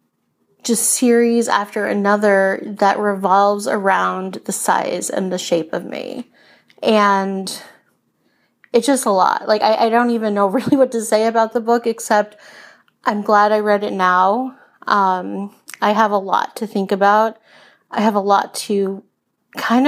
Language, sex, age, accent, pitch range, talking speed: English, female, 30-49, American, 200-235 Hz, 160 wpm